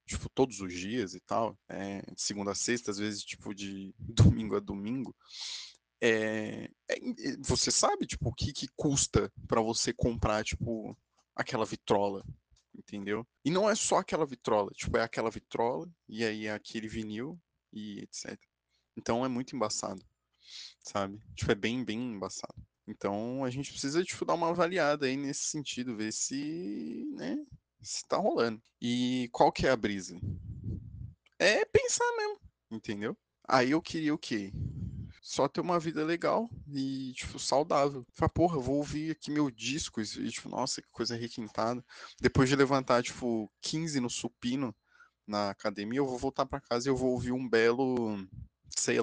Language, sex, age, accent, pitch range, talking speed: Portuguese, male, 20-39, Brazilian, 105-140 Hz, 165 wpm